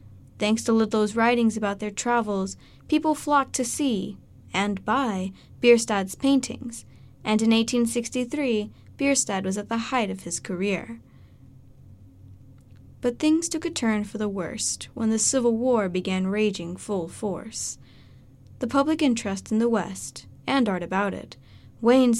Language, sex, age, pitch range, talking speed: English, female, 20-39, 185-250 Hz, 145 wpm